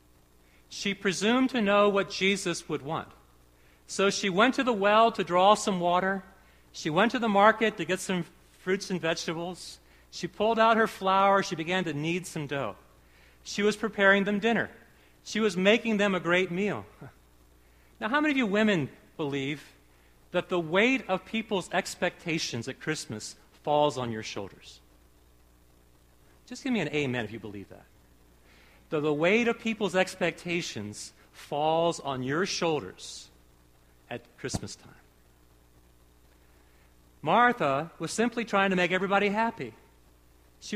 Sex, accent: male, American